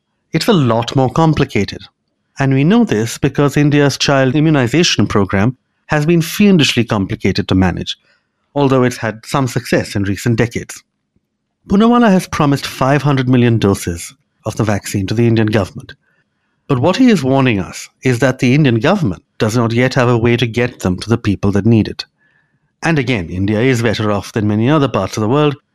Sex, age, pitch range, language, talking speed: male, 60-79, 105-140 Hz, English, 185 wpm